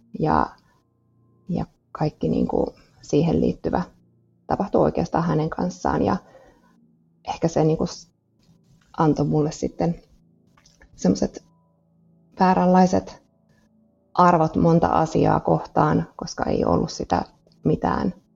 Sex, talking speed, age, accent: female, 95 wpm, 20-39, native